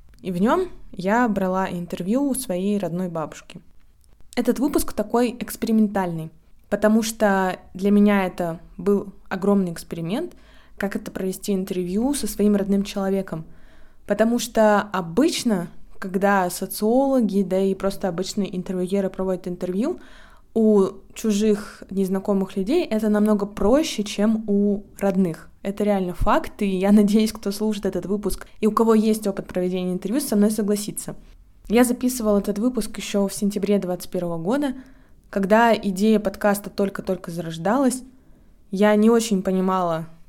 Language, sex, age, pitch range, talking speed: Russian, female, 20-39, 190-220 Hz, 135 wpm